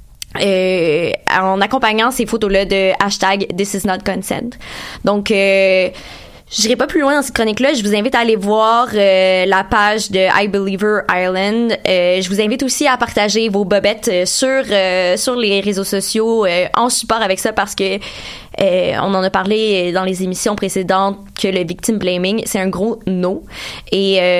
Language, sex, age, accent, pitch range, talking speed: French, female, 20-39, Canadian, 190-225 Hz, 175 wpm